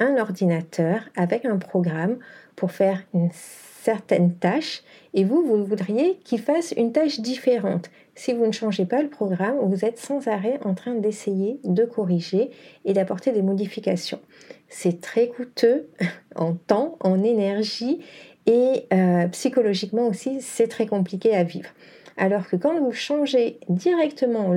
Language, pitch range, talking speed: French, 180-245 Hz, 150 wpm